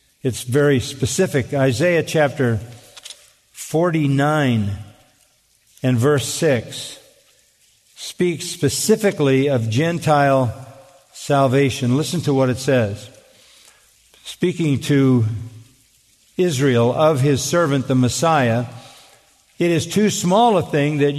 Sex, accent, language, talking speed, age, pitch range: male, American, English, 95 wpm, 50-69, 135-185 Hz